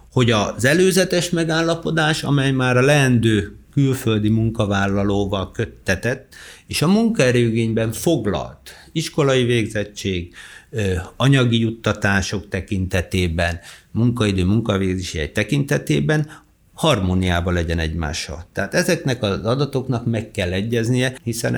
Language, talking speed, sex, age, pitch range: Hungarian, 90 wpm, male, 60-79, 95-125 Hz